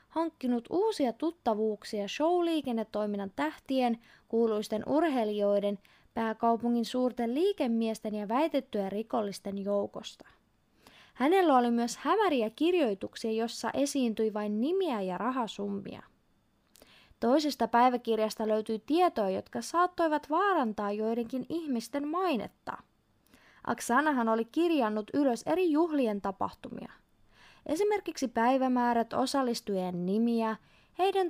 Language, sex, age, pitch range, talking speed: Finnish, female, 20-39, 220-300 Hz, 90 wpm